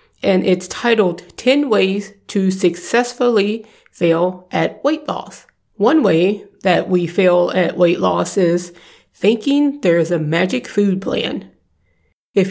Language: English